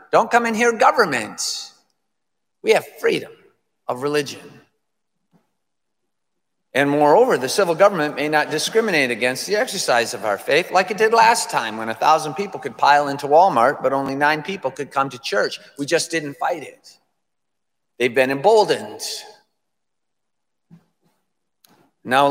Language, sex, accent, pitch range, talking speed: English, male, American, 145-220 Hz, 145 wpm